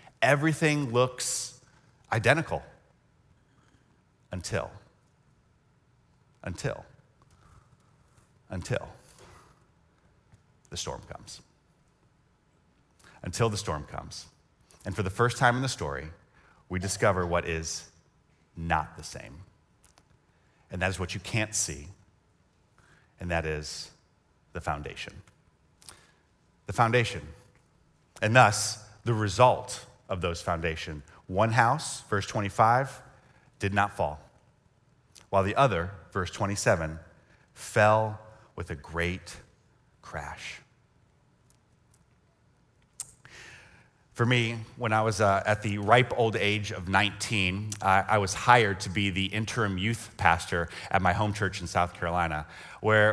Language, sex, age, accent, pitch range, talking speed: English, male, 30-49, American, 90-120 Hz, 110 wpm